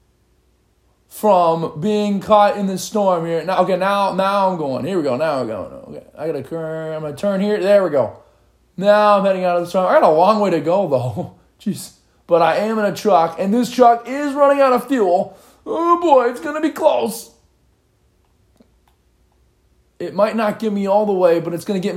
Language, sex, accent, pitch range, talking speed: English, male, American, 145-210 Hz, 220 wpm